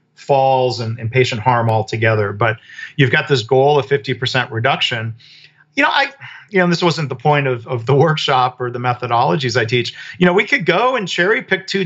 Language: English